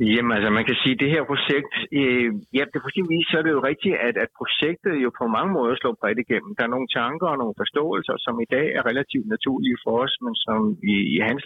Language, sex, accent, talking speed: Danish, male, native, 255 wpm